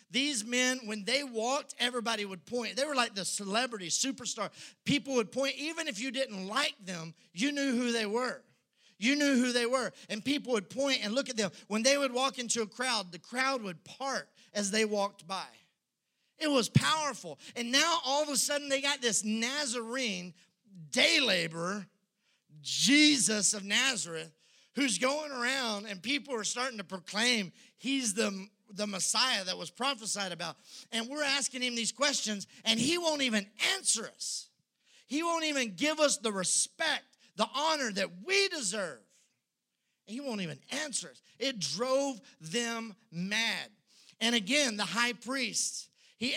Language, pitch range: English, 205-275 Hz